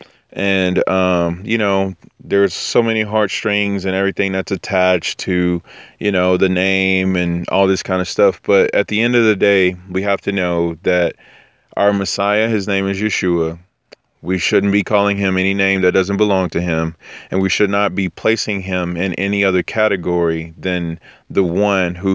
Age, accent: 30-49, American